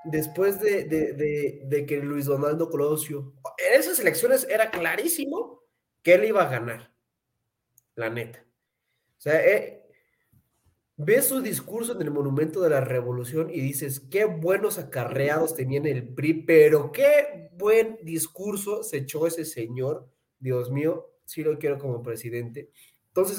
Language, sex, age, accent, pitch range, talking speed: Spanish, male, 30-49, Mexican, 130-175 Hz, 150 wpm